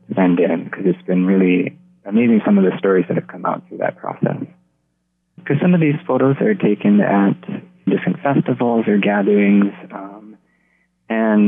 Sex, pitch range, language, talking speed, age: male, 95-105 Hz, English, 165 wpm, 20-39